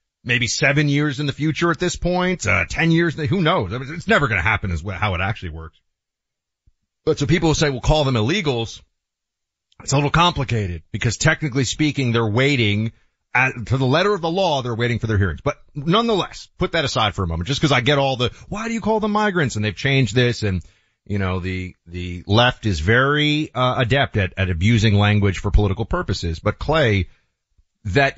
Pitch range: 115-185 Hz